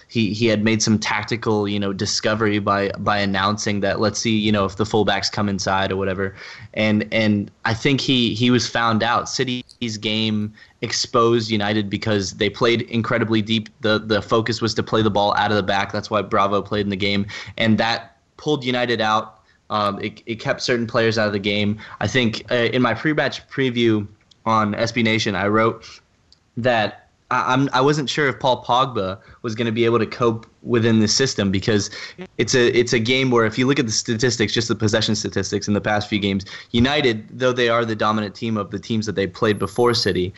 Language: English